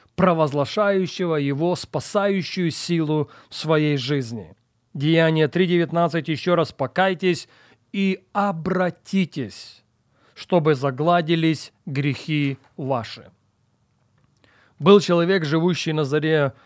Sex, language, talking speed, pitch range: male, Russian, 85 wpm, 130-175 Hz